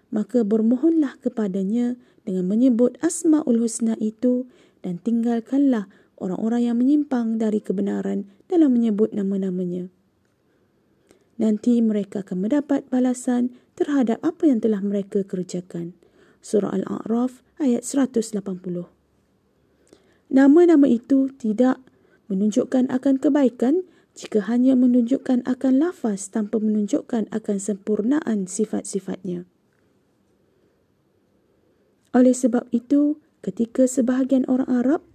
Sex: female